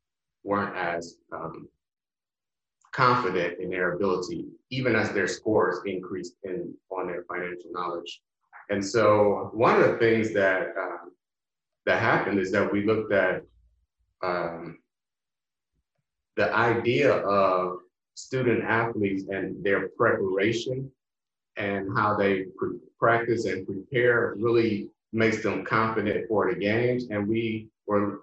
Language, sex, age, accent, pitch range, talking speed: English, male, 30-49, American, 95-115 Hz, 125 wpm